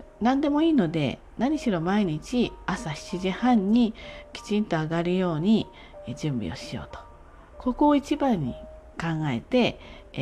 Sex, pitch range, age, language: female, 135-210 Hz, 40-59, Japanese